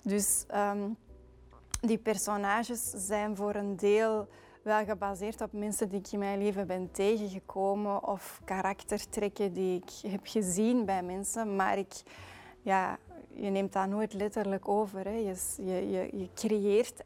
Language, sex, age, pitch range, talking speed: Dutch, female, 20-39, 190-215 Hz, 145 wpm